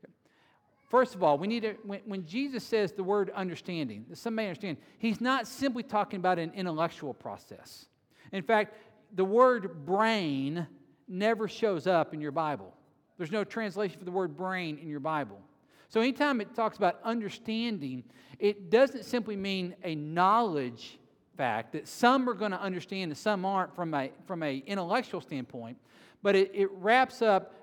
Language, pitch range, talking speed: English, 165-220 Hz, 165 wpm